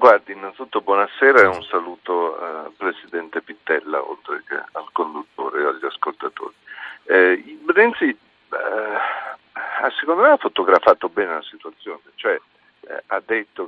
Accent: native